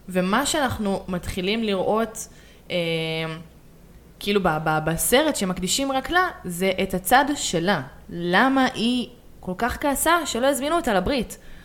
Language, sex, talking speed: Hebrew, female, 130 wpm